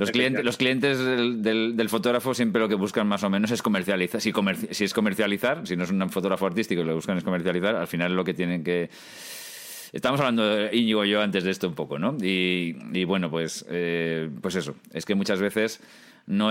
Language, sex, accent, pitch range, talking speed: Spanish, male, Spanish, 95-110 Hz, 225 wpm